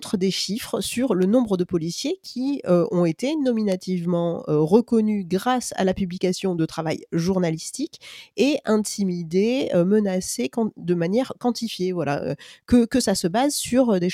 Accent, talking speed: French, 160 wpm